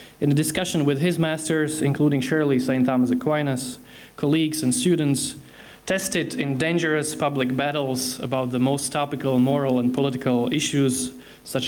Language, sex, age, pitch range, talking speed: Slovak, male, 20-39, 125-150 Hz, 145 wpm